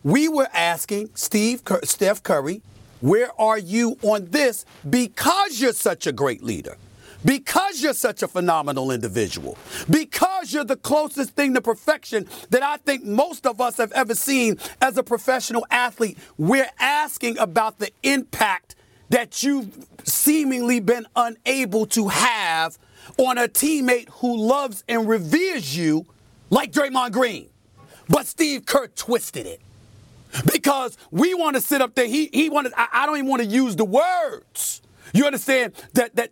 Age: 40-59